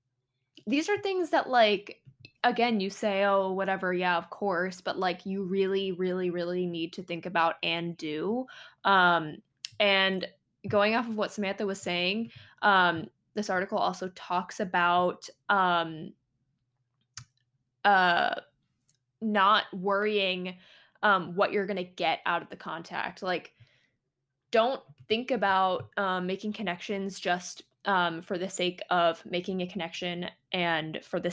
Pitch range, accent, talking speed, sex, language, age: 170-200 Hz, American, 140 wpm, female, English, 20-39